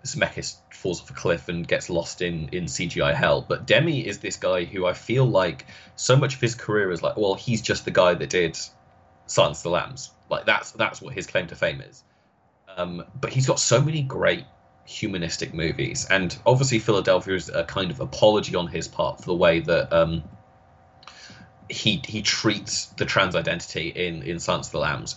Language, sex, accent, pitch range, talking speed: English, male, British, 85-125 Hz, 205 wpm